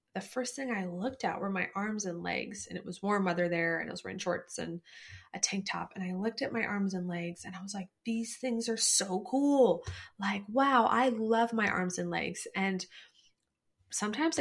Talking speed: 220 wpm